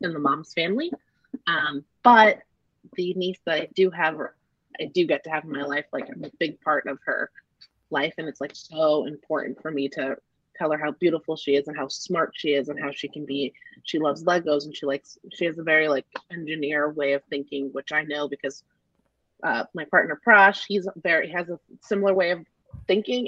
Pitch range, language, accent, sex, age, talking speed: 145-185 Hz, English, American, female, 30-49, 215 wpm